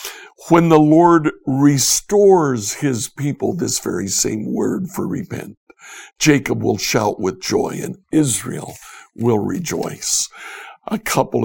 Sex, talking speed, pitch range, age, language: male, 120 wpm, 120-170 Hz, 60-79, English